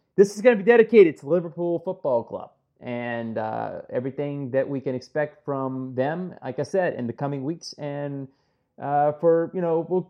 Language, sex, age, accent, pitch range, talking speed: English, male, 30-49, American, 120-160 Hz, 190 wpm